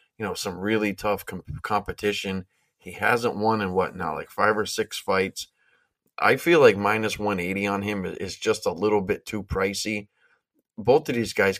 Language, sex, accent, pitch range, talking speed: English, male, American, 95-110 Hz, 180 wpm